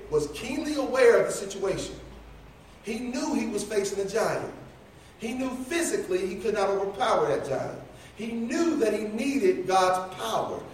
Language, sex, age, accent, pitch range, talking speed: English, male, 40-59, American, 195-260 Hz, 160 wpm